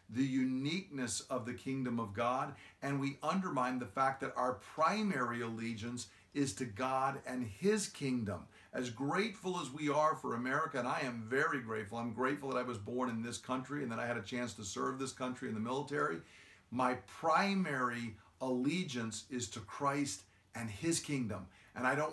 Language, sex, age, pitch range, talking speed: English, male, 50-69, 115-140 Hz, 185 wpm